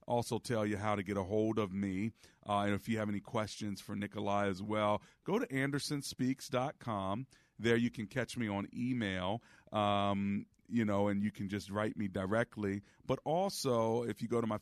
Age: 40-59